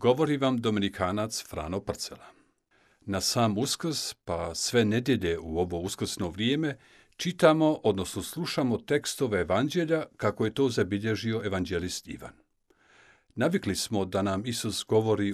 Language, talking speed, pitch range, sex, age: Croatian, 125 wpm, 105-155 Hz, male, 50-69